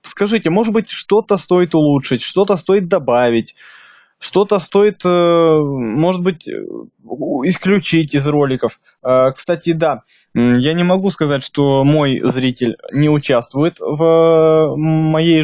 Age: 20-39